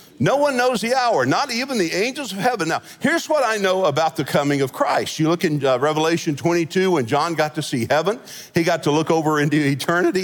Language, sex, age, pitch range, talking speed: English, male, 50-69, 145-185 Hz, 235 wpm